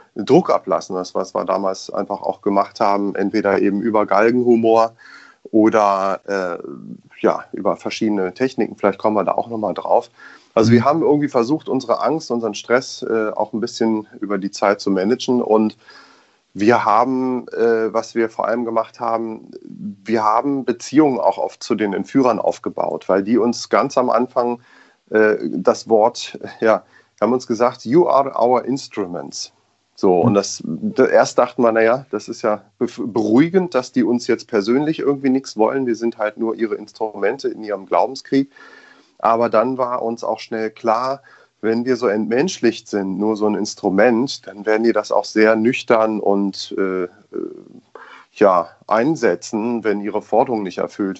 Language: German